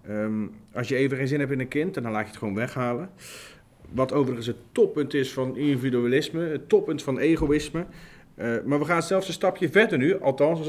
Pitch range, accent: 120-155 Hz, Dutch